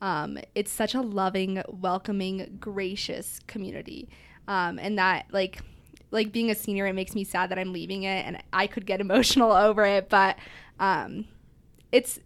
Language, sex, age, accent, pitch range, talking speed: English, female, 20-39, American, 195-240 Hz, 165 wpm